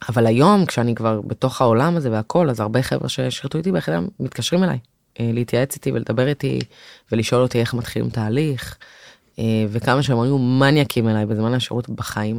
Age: 20-39